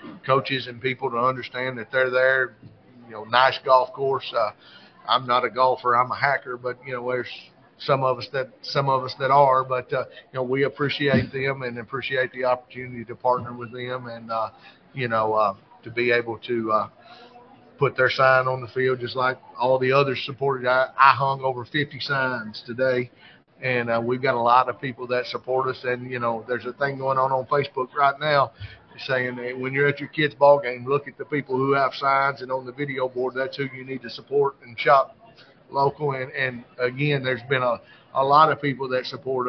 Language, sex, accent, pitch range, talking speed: English, male, American, 125-140 Hz, 215 wpm